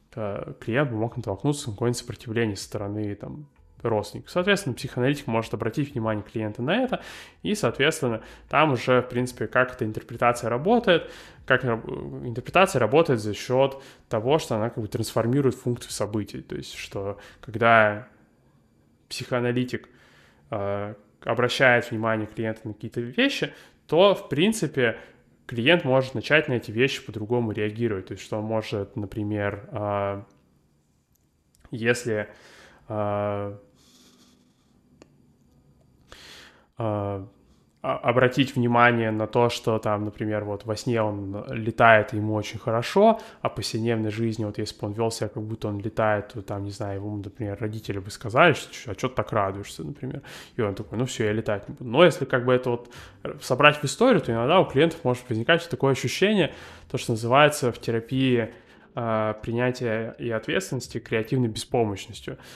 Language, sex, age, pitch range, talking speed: Russian, male, 20-39, 105-130 Hz, 150 wpm